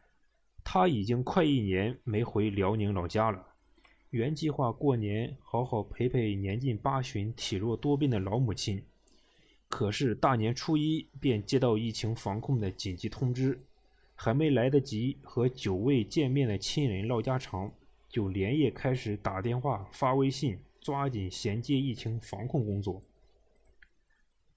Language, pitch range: Chinese, 105-140 Hz